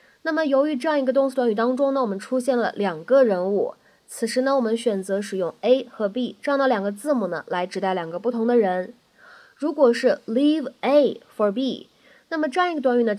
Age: 20-39